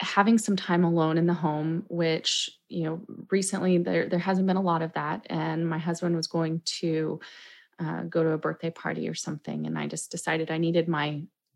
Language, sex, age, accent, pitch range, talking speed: English, female, 30-49, American, 160-195 Hz, 210 wpm